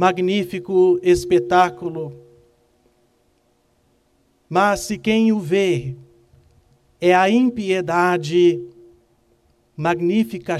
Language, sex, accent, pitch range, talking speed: Portuguese, male, Brazilian, 140-210 Hz, 60 wpm